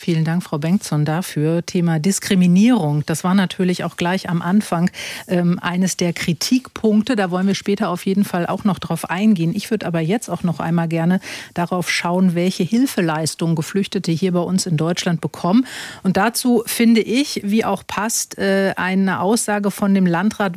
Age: 50-69